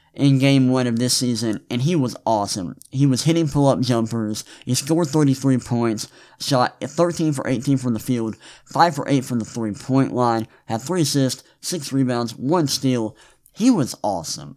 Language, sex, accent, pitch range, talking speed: English, male, American, 120-140 Hz, 160 wpm